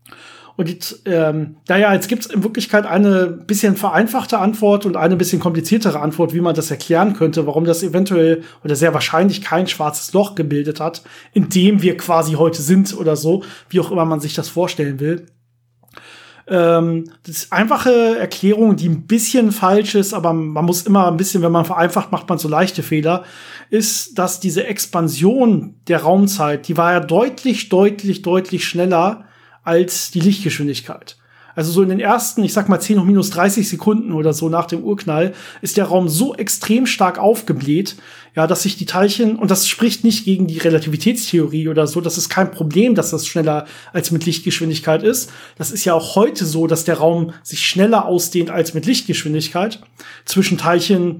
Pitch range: 165-200 Hz